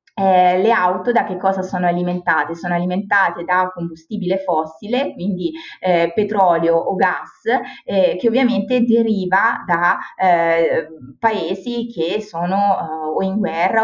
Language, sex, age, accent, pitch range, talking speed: Italian, female, 20-39, native, 180-215 Hz, 135 wpm